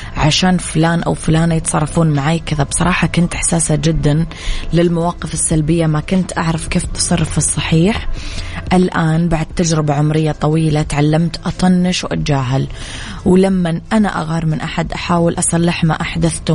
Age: 20-39